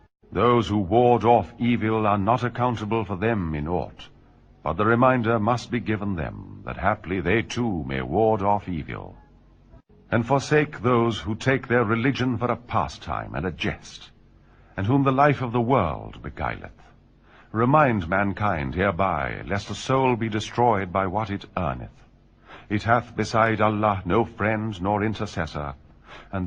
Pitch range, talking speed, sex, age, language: 95-120 Hz, 155 wpm, male, 50-69, Urdu